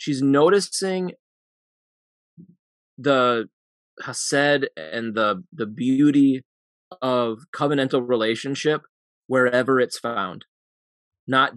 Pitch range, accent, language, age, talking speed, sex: 110-130 Hz, American, English, 20-39, 80 wpm, male